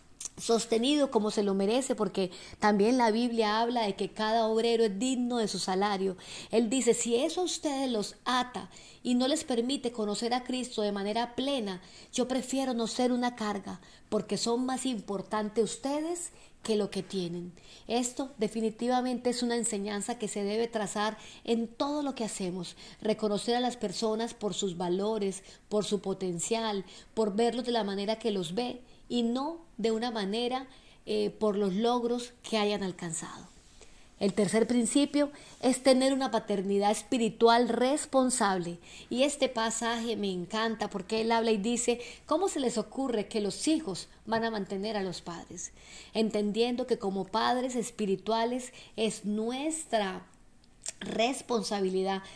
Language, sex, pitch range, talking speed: Spanish, female, 205-245 Hz, 155 wpm